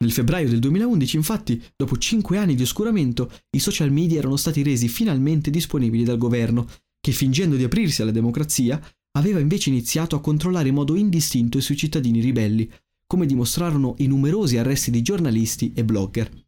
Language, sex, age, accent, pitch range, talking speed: Italian, male, 30-49, native, 120-160 Hz, 170 wpm